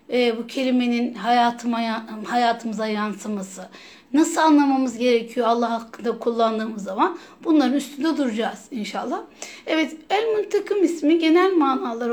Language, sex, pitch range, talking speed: Turkish, female, 235-315 Hz, 115 wpm